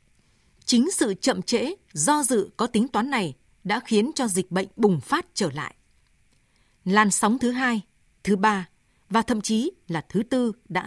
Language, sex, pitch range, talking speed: Vietnamese, female, 190-250 Hz, 175 wpm